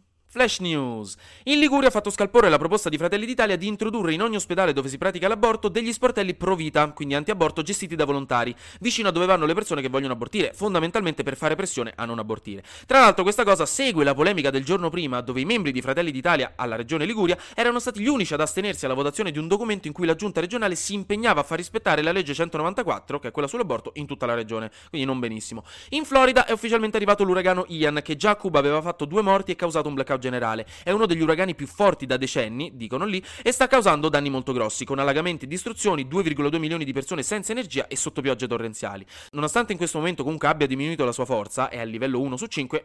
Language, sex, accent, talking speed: Italian, male, native, 230 wpm